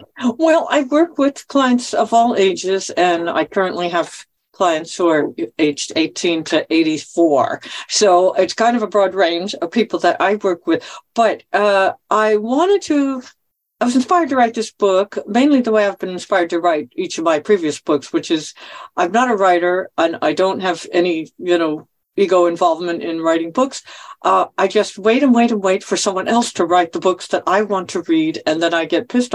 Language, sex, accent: English, female, American